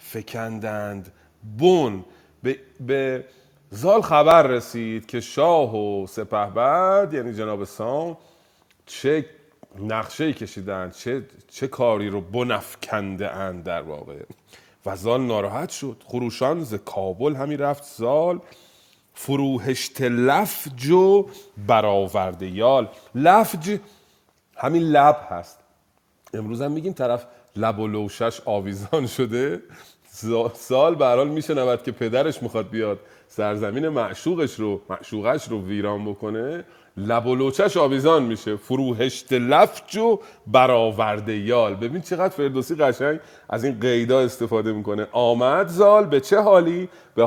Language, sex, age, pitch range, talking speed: Persian, male, 40-59, 110-145 Hz, 110 wpm